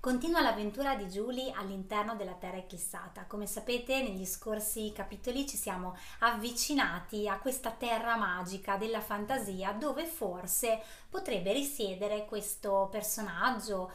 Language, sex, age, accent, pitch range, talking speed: Italian, female, 20-39, native, 200-255 Hz, 120 wpm